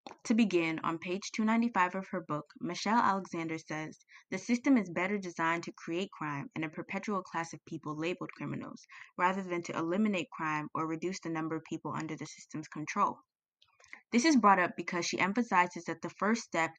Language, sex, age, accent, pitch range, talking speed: English, female, 20-39, American, 160-195 Hz, 190 wpm